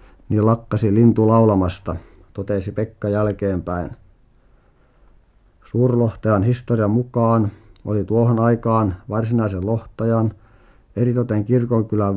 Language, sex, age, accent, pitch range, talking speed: Finnish, male, 50-69, native, 100-115 Hz, 85 wpm